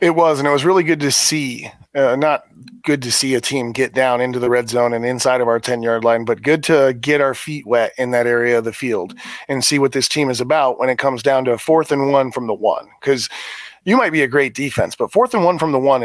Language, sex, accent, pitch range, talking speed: English, male, American, 125-150 Hz, 280 wpm